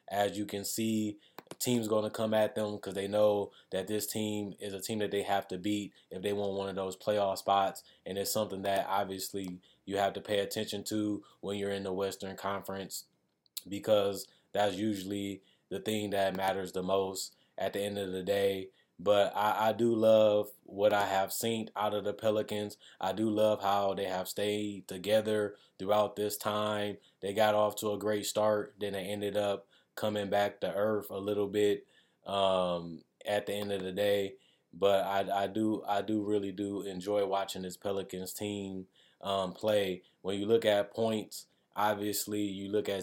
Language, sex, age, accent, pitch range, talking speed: English, male, 20-39, American, 100-105 Hz, 190 wpm